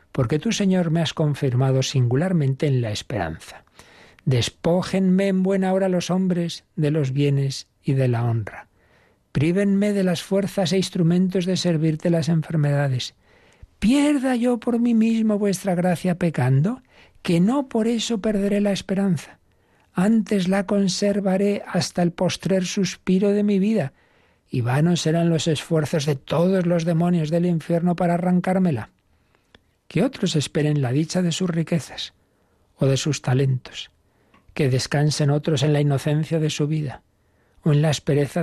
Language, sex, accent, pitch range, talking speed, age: Spanish, male, Spanish, 140-185 Hz, 150 wpm, 60-79